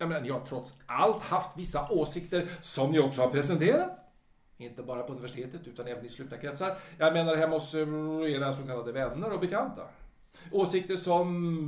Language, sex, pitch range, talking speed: Swedish, male, 140-200 Hz, 180 wpm